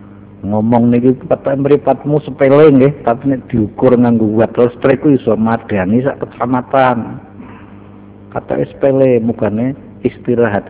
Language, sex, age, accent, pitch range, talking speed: Indonesian, male, 50-69, native, 100-130 Hz, 135 wpm